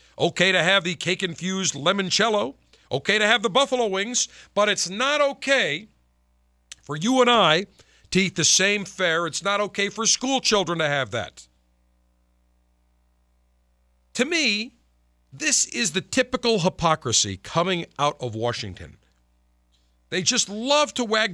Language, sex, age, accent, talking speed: English, male, 50-69, American, 140 wpm